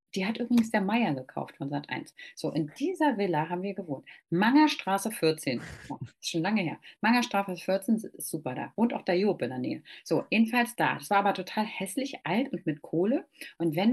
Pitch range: 170-255 Hz